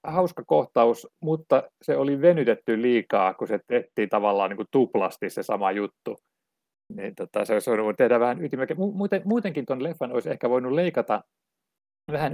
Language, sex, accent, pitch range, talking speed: Finnish, male, native, 115-175 Hz, 155 wpm